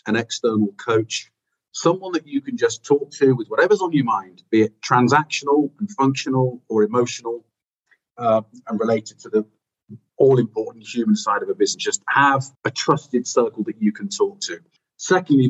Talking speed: 170 wpm